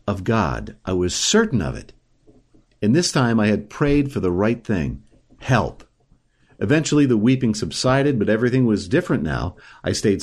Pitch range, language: 100-135 Hz, English